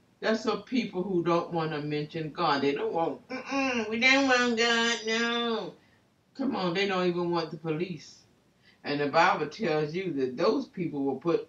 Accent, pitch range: American, 140-200 Hz